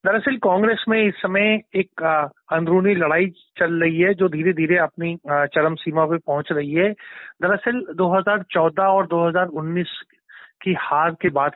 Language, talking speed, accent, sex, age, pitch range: Hindi, 150 wpm, native, male, 30-49, 160-190 Hz